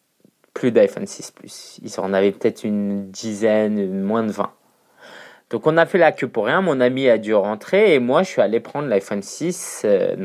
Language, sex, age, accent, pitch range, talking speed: French, male, 20-39, French, 105-140 Hz, 210 wpm